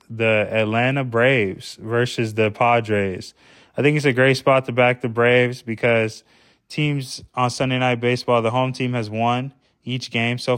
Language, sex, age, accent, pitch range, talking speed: English, male, 20-39, American, 110-130 Hz, 170 wpm